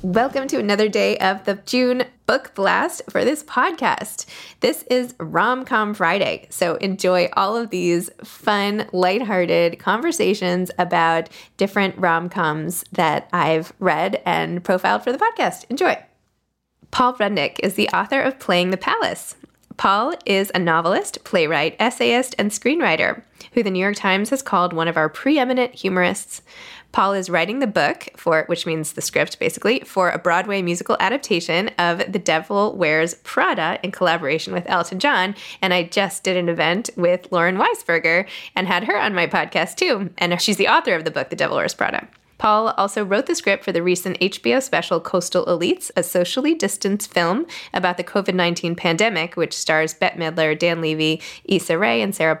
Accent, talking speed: American, 170 wpm